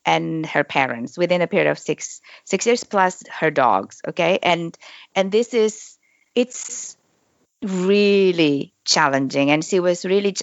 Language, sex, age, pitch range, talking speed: English, female, 30-49, 160-200 Hz, 145 wpm